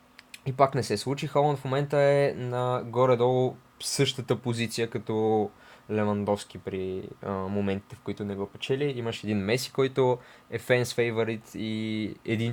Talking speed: 150 wpm